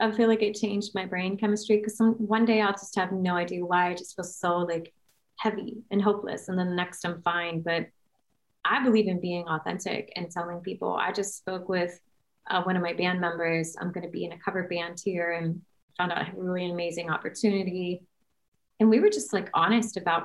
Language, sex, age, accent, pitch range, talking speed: English, female, 30-49, American, 175-220 Hz, 215 wpm